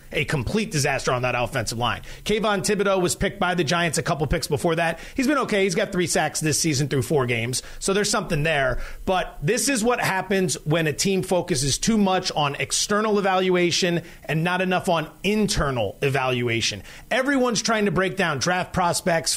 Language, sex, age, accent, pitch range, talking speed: English, male, 30-49, American, 155-210 Hz, 190 wpm